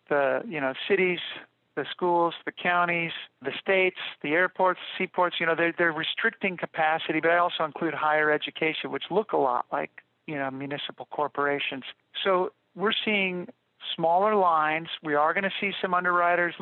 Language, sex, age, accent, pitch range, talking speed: English, male, 50-69, American, 155-180 Hz, 165 wpm